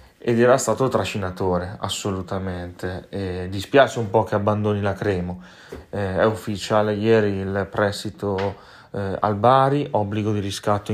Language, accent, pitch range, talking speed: Italian, native, 100-115 Hz, 135 wpm